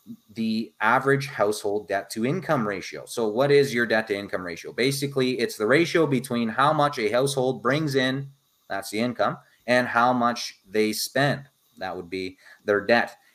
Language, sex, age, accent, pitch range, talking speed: English, male, 30-49, American, 120-160 Hz, 175 wpm